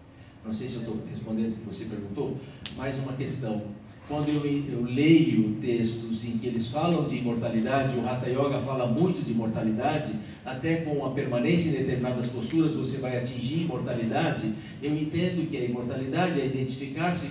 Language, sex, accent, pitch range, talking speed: Portuguese, male, Brazilian, 115-140 Hz, 170 wpm